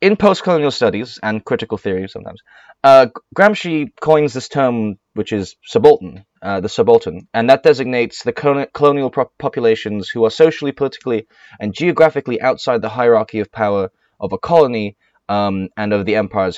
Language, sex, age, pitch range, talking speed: English, male, 20-39, 100-140 Hz, 155 wpm